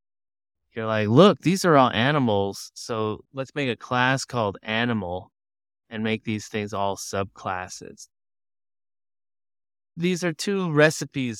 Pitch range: 100-130 Hz